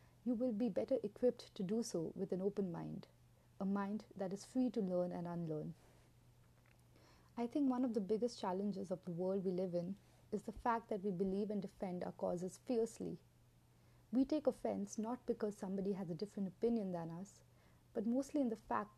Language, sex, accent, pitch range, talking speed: English, female, Indian, 180-220 Hz, 195 wpm